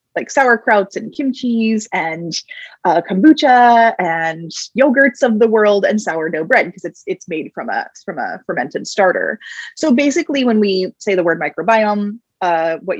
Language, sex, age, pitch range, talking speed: English, female, 20-39, 175-240 Hz, 160 wpm